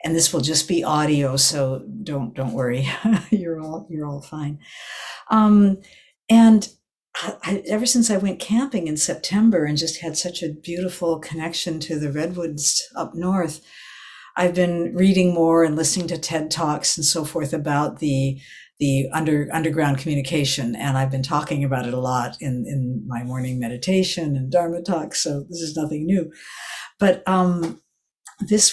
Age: 60-79